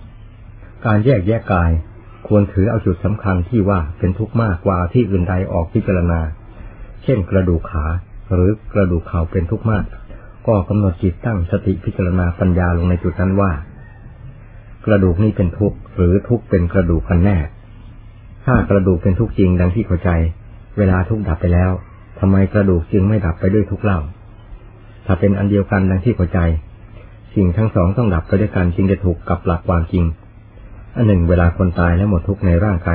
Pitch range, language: 90-110 Hz, Thai